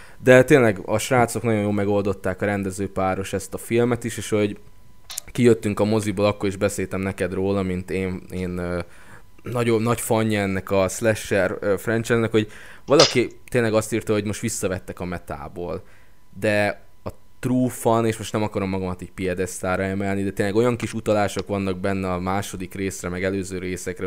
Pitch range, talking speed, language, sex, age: 95-110 Hz, 170 wpm, Hungarian, male, 20-39